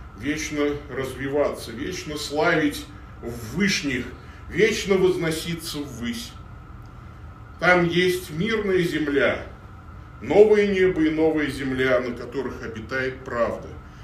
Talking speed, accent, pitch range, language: 95 wpm, native, 110-155 Hz, Russian